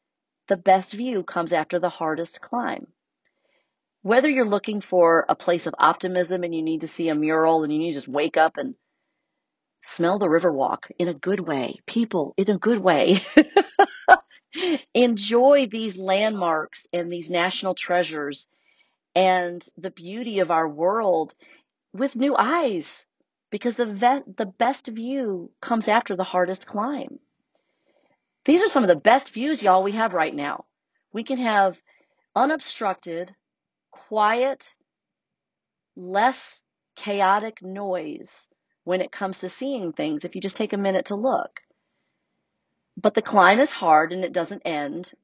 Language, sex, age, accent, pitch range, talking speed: English, female, 40-59, American, 175-250 Hz, 150 wpm